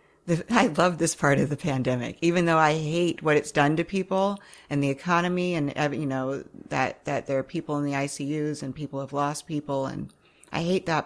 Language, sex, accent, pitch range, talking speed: English, female, American, 135-160 Hz, 210 wpm